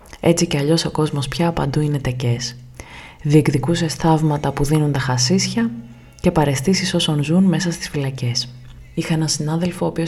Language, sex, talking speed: Greek, female, 160 wpm